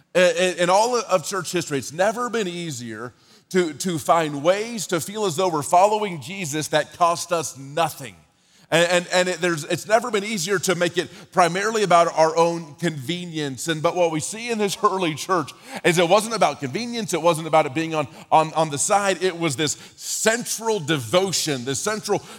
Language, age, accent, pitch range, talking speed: English, 30-49, American, 160-195 Hz, 195 wpm